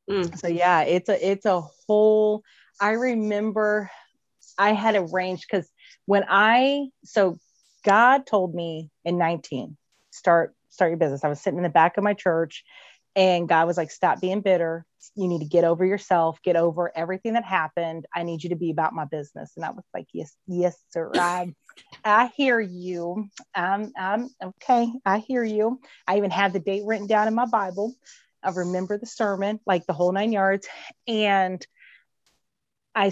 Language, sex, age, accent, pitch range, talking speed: English, female, 30-49, American, 170-205 Hz, 180 wpm